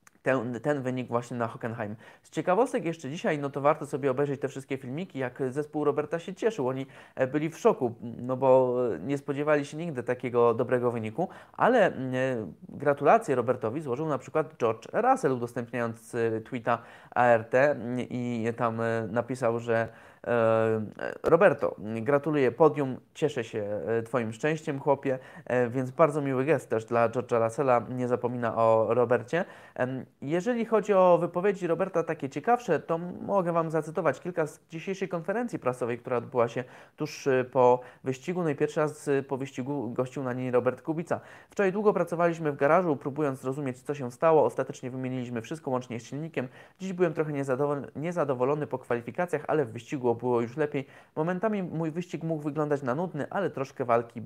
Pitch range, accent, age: 125-155 Hz, Polish, 20-39